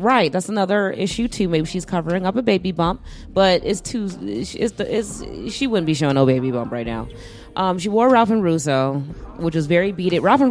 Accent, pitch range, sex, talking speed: American, 145-190 Hz, female, 230 wpm